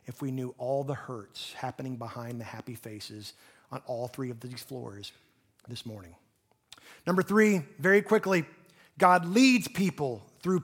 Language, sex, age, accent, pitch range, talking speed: English, male, 30-49, American, 150-205 Hz, 150 wpm